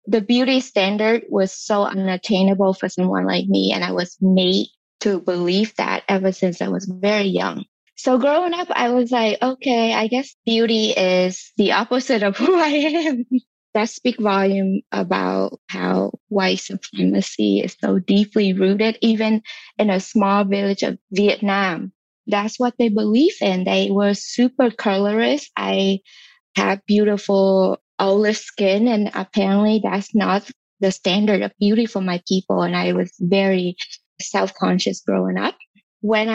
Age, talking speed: 20-39, 150 wpm